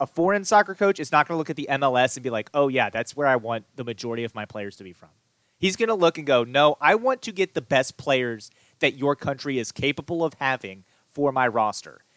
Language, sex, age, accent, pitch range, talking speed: English, male, 30-49, American, 120-165 Hz, 260 wpm